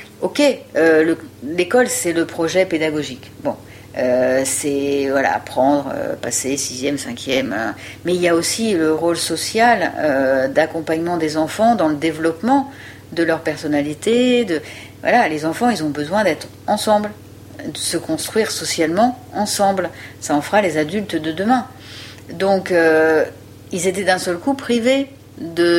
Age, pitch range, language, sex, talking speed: 60-79, 135-190 Hz, French, female, 145 wpm